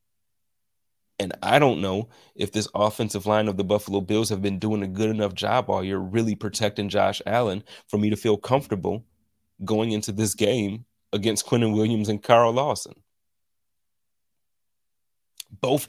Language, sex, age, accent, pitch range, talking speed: English, male, 30-49, American, 100-115 Hz, 155 wpm